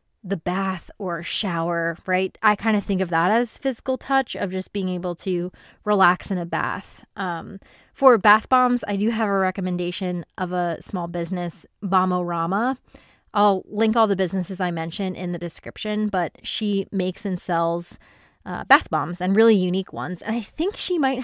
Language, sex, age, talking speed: English, female, 20-39, 185 wpm